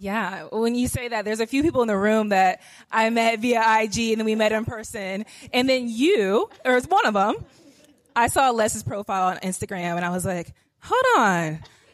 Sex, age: female, 20-39